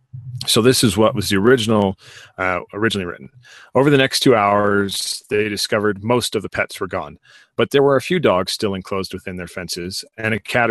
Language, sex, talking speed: English, male, 205 wpm